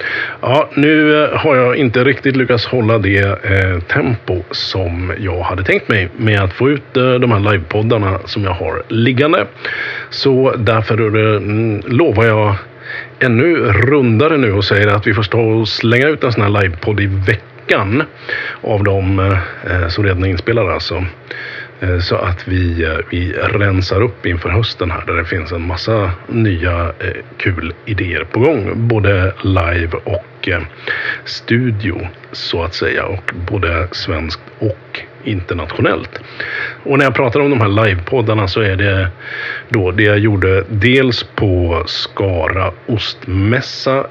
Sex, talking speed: male, 145 wpm